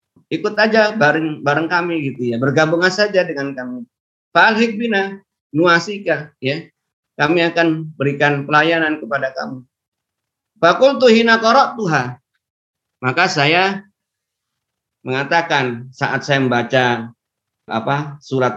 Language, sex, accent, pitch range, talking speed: Indonesian, male, native, 125-195 Hz, 100 wpm